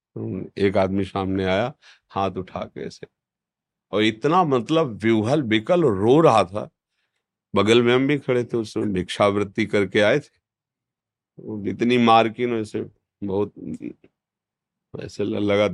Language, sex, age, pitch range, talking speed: Hindi, male, 40-59, 95-115 Hz, 120 wpm